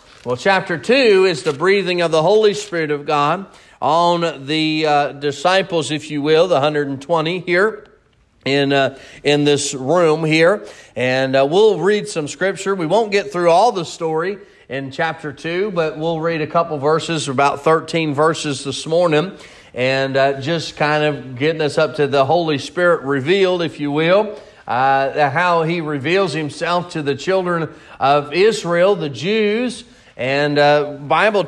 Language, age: English, 40-59